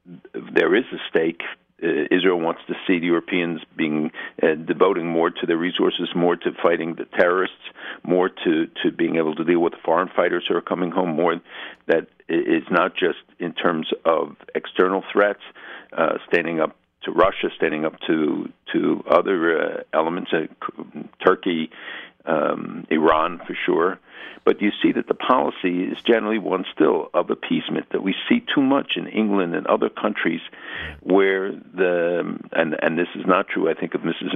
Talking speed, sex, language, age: 175 wpm, male, English, 60-79